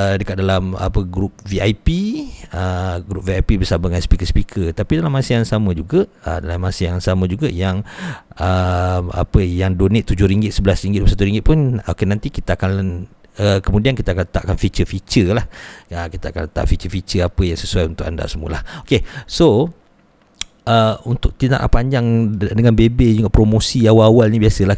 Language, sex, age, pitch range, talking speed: Malay, male, 50-69, 90-110 Hz, 170 wpm